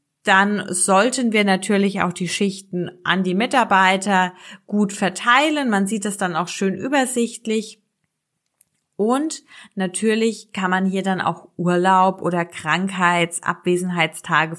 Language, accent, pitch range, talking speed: German, German, 185-230 Hz, 120 wpm